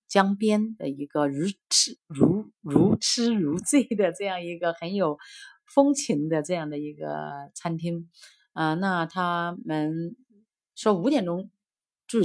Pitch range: 150-200 Hz